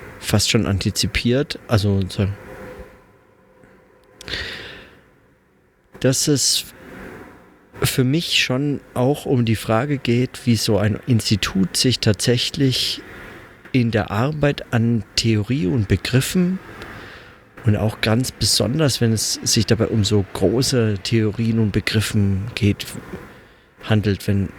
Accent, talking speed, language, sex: German, 105 wpm, German, male